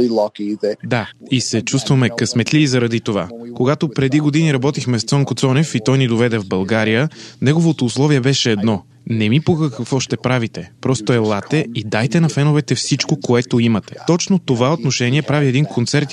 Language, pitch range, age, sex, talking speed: Bulgarian, 115-145 Hz, 20-39, male, 175 wpm